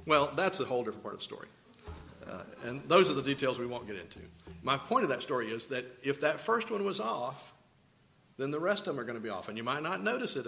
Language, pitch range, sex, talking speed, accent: English, 105-135 Hz, male, 275 wpm, American